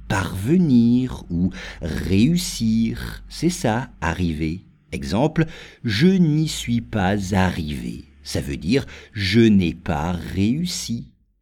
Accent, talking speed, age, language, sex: French, 100 wpm, 50-69, English, male